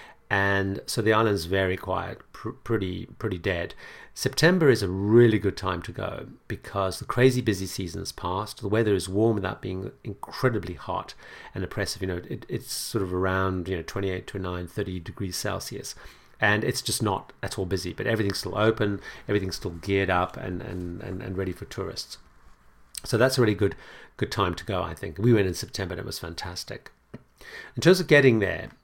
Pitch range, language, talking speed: 95-110 Hz, English, 200 wpm